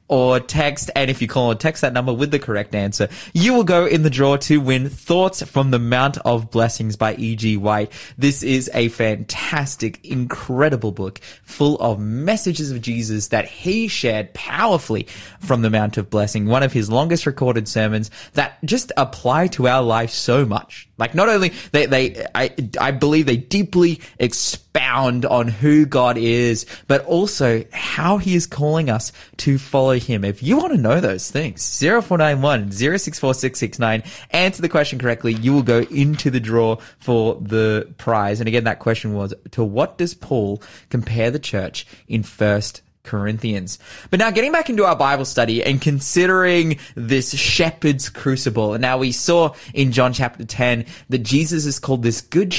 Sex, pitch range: male, 115-150 Hz